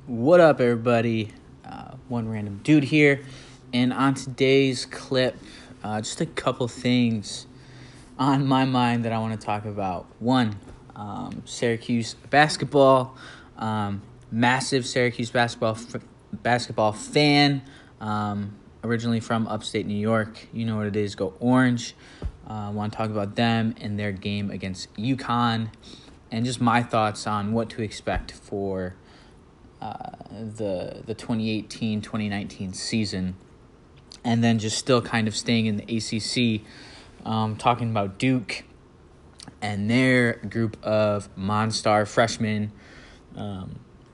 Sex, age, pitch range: male, 20-39, 105-125 Hz